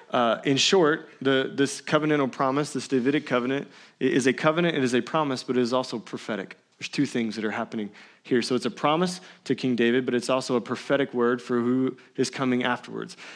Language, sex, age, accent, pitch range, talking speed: English, male, 20-39, American, 130-175 Hz, 205 wpm